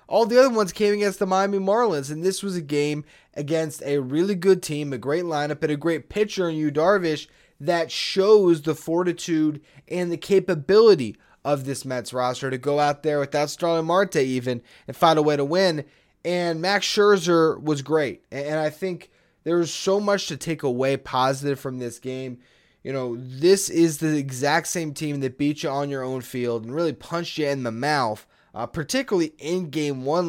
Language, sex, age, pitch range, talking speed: English, male, 20-39, 140-170 Hz, 200 wpm